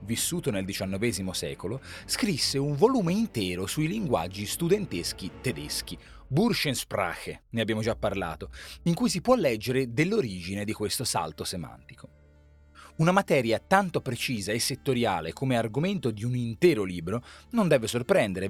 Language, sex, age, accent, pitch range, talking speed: Italian, male, 30-49, native, 110-175 Hz, 135 wpm